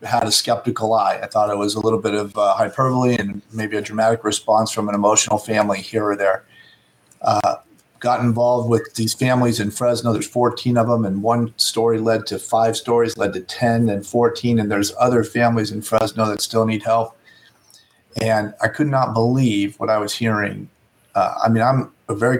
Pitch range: 105-120 Hz